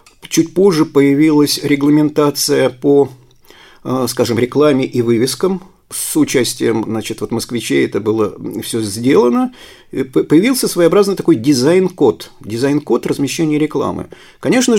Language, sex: Russian, male